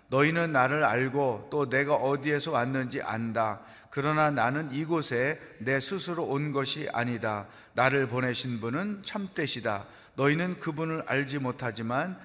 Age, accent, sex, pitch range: 30-49, native, male, 120-165 Hz